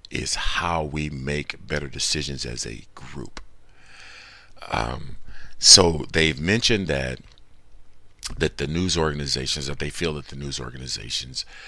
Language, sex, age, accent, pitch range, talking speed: English, male, 50-69, American, 70-100 Hz, 130 wpm